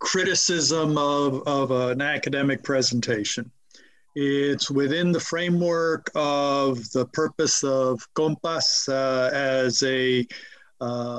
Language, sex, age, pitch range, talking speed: English, male, 50-69, 130-150 Hz, 100 wpm